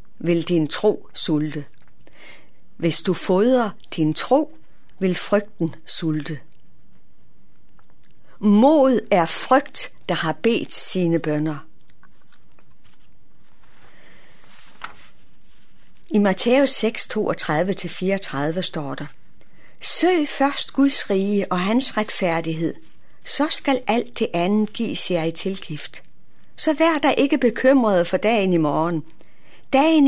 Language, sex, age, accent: Danish, female, 60-79, native